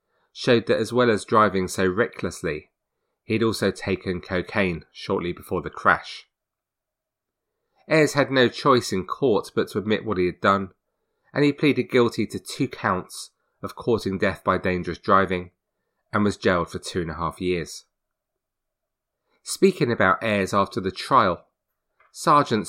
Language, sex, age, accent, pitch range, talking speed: English, male, 30-49, British, 90-115 Hz, 155 wpm